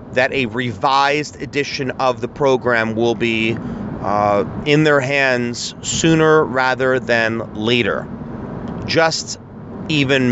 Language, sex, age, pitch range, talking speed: English, male, 30-49, 115-150 Hz, 110 wpm